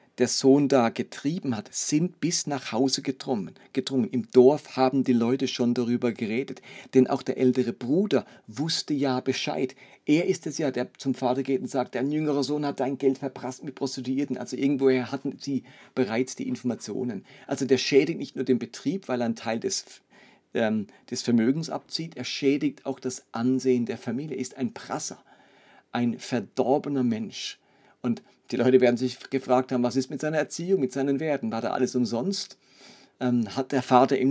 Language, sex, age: German, male, 50-69